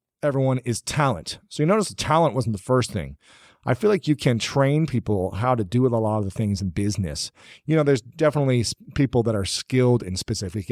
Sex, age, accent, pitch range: male, 40-59, American, 105-140 Hz